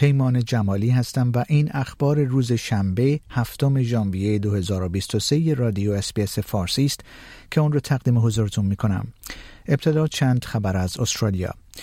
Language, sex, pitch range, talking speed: Persian, male, 105-145 Hz, 135 wpm